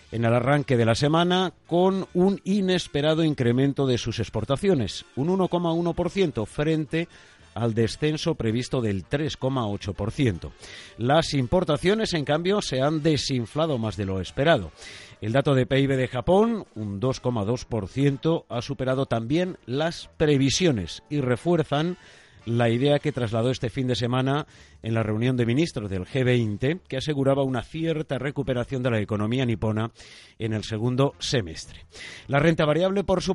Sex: male